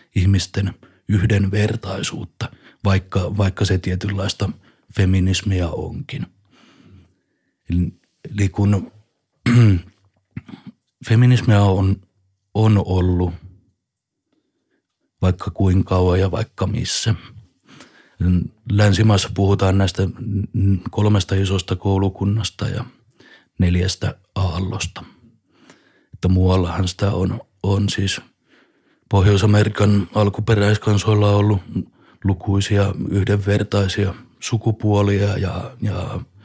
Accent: native